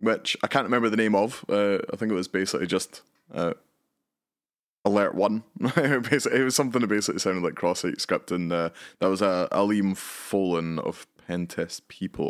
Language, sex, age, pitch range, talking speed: English, male, 20-39, 85-110 Hz, 185 wpm